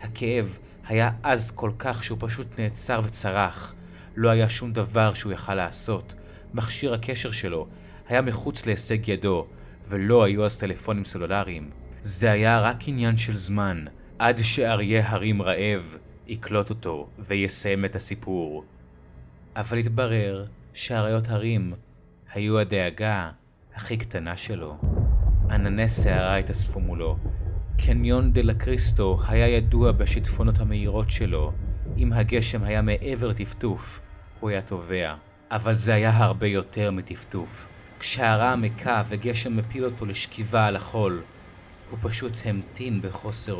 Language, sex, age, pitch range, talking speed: Hebrew, male, 30-49, 95-115 Hz, 125 wpm